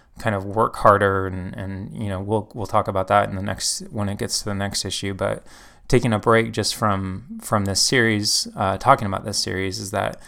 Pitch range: 95-110 Hz